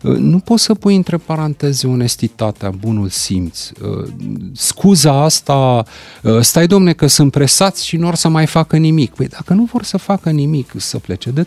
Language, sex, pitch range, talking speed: Romanian, male, 120-165 Hz, 175 wpm